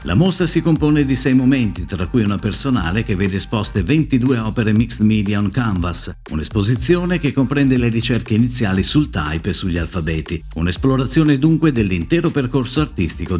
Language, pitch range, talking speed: Italian, 95-145 Hz, 160 wpm